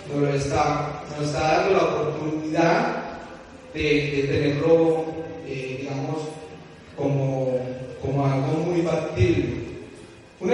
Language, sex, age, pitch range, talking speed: Spanish, male, 30-49, 145-195 Hz, 95 wpm